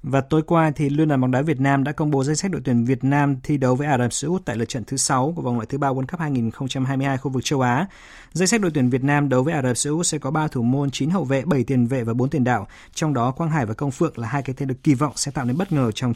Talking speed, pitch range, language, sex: 320 wpm, 125-160 Hz, Vietnamese, male